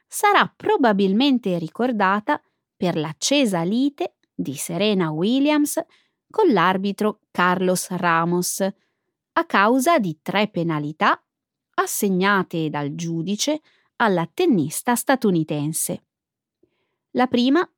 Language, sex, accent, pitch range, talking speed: Italian, female, native, 175-270 Hz, 90 wpm